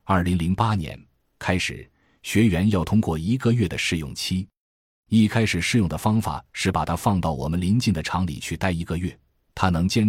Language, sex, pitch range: Chinese, male, 80-105 Hz